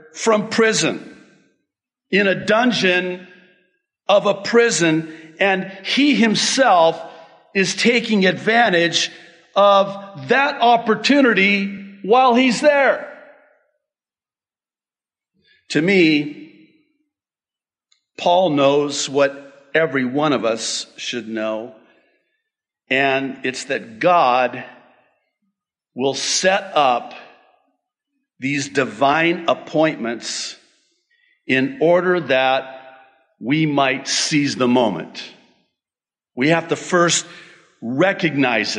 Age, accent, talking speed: 50-69, American, 85 wpm